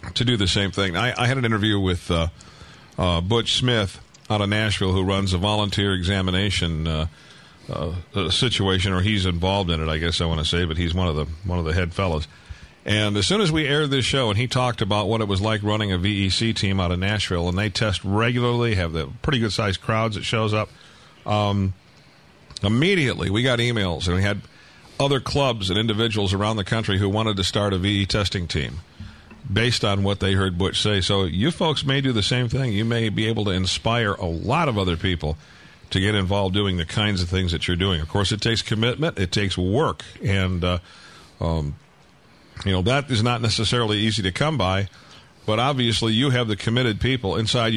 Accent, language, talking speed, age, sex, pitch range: American, English, 215 wpm, 50-69, male, 95-115 Hz